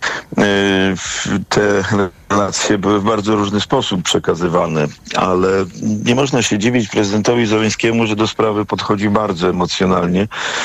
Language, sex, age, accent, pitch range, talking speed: Polish, male, 50-69, native, 95-110 Hz, 120 wpm